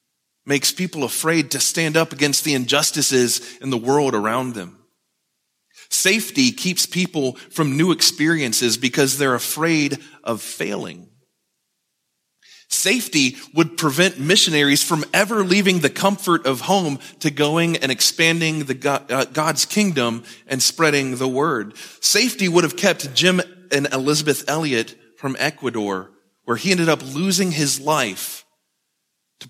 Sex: male